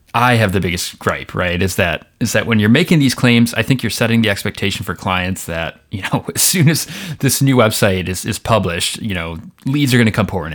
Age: 30-49